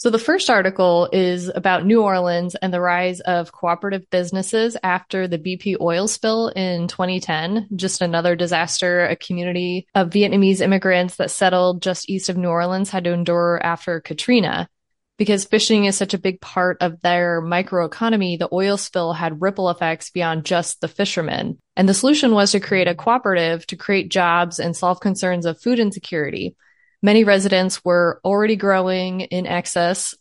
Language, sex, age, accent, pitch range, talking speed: English, female, 20-39, American, 175-200 Hz, 170 wpm